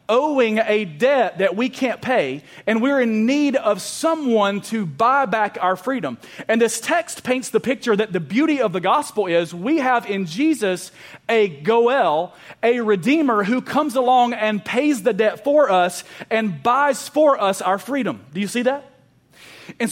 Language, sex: English, male